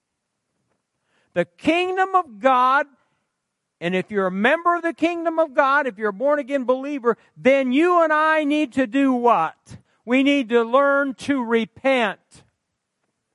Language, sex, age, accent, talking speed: English, male, 50-69, American, 150 wpm